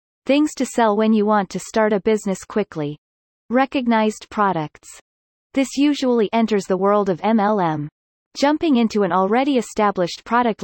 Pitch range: 190-245 Hz